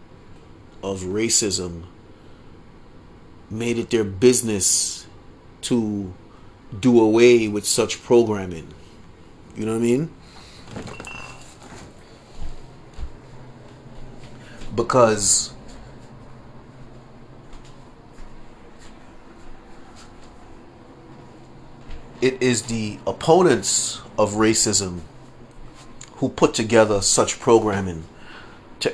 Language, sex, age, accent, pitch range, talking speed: English, male, 30-49, American, 100-120 Hz, 60 wpm